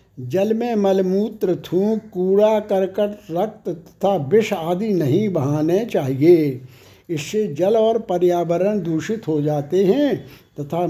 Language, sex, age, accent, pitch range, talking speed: Hindi, male, 60-79, native, 160-210 Hz, 125 wpm